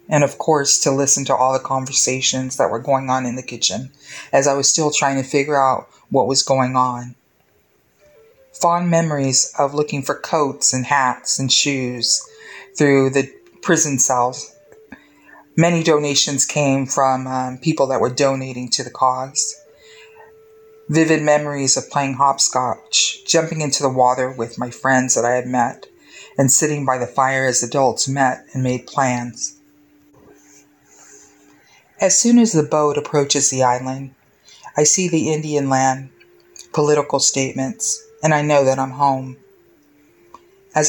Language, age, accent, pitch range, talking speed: English, 40-59, American, 135-155 Hz, 150 wpm